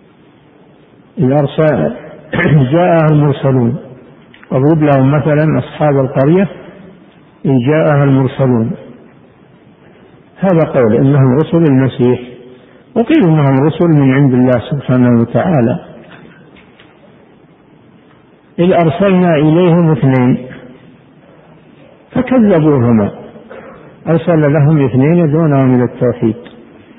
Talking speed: 80 wpm